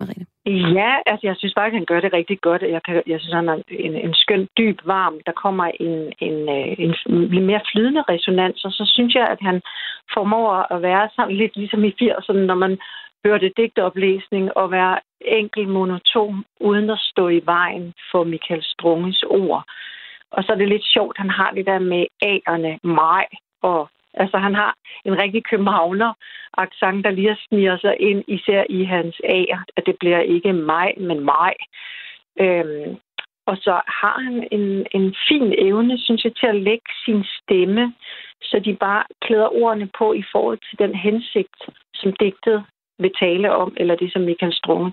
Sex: female